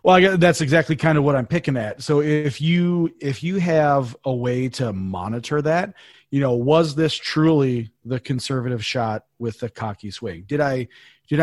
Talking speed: 190 wpm